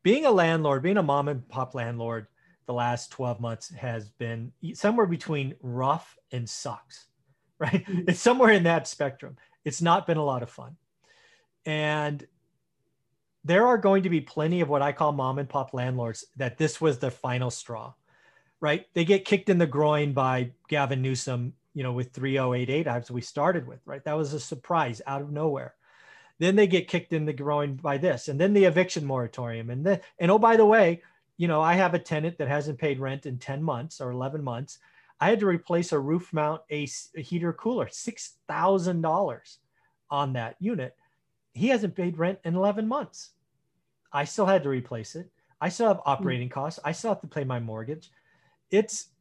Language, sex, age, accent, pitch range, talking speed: English, male, 30-49, American, 130-175 Hz, 195 wpm